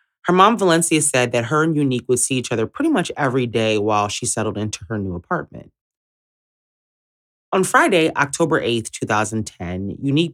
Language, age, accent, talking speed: English, 30-49, American, 170 wpm